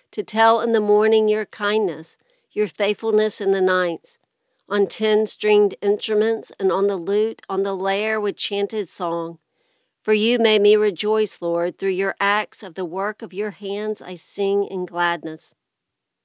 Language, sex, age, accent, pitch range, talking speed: English, female, 50-69, American, 185-215 Hz, 165 wpm